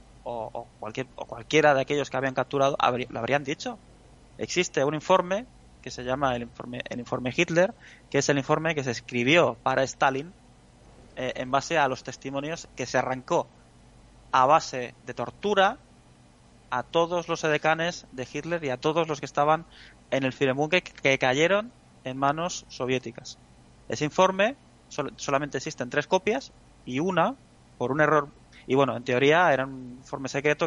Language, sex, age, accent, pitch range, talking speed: Spanish, male, 20-39, Spanish, 125-155 Hz, 170 wpm